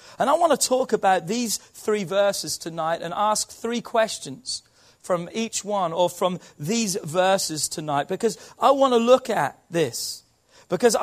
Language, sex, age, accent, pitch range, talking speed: English, male, 40-59, British, 155-220 Hz, 165 wpm